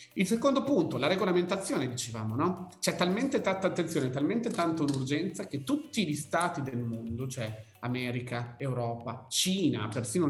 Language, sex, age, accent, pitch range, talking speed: Italian, male, 40-59, native, 135-185 Hz, 145 wpm